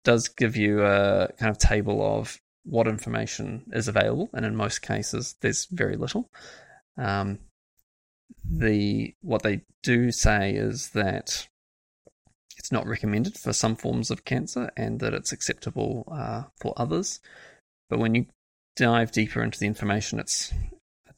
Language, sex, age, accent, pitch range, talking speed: English, male, 20-39, Australian, 100-120 Hz, 145 wpm